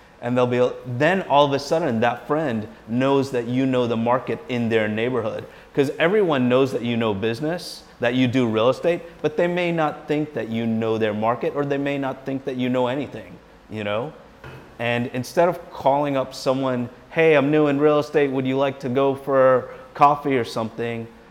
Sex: male